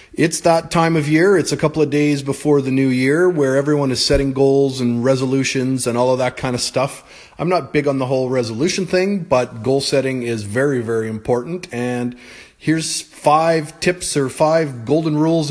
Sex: male